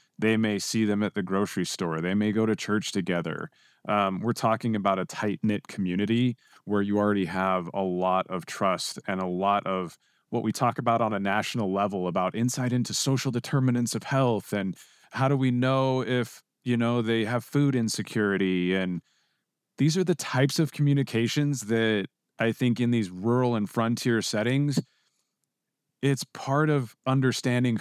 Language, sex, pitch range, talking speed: English, male, 100-125 Hz, 175 wpm